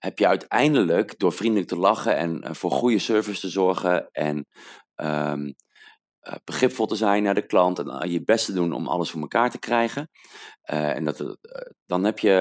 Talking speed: 185 wpm